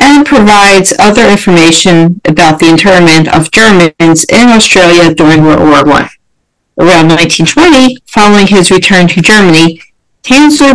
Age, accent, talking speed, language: 50-69, American, 130 wpm, English